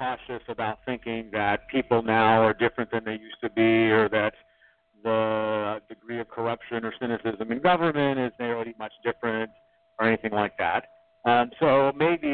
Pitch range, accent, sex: 115-180 Hz, American, male